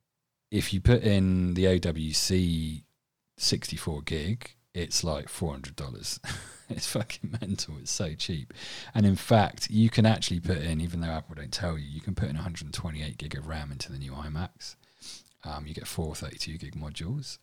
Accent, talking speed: British, 170 wpm